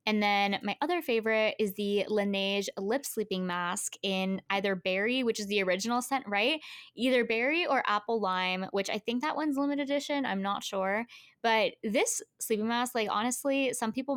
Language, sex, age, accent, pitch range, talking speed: English, female, 20-39, American, 190-235 Hz, 180 wpm